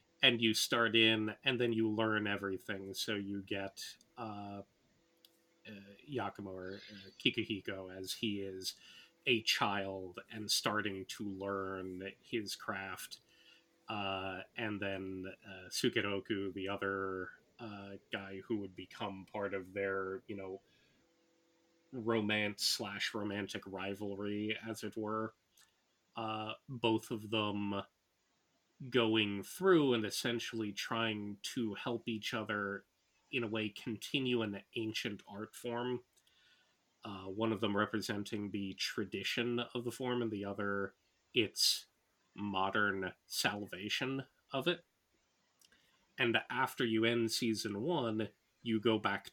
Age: 30-49